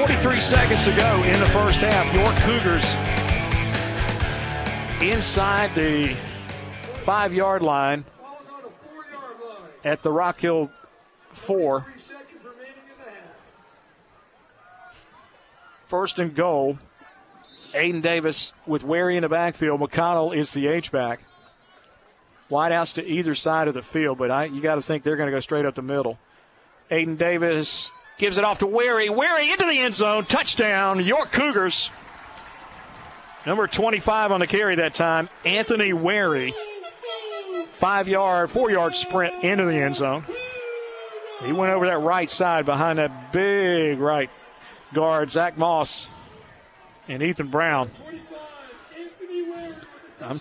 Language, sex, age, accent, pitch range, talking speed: English, male, 50-69, American, 150-215 Hz, 120 wpm